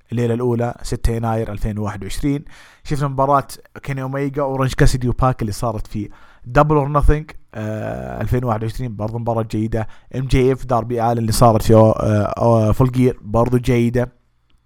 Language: English